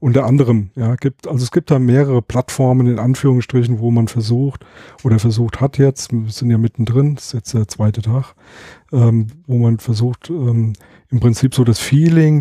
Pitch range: 115-135 Hz